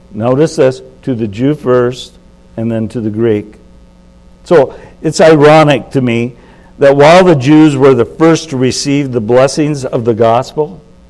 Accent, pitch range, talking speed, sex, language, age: American, 110-140 Hz, 160 wpm, male, English, 60-79